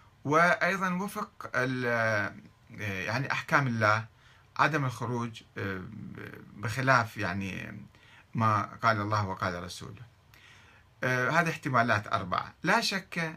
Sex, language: male, Arabic